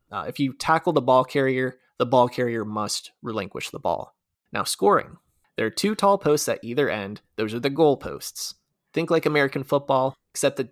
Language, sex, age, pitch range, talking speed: English, male, 20-39, 125-155 Hz, 195 wpm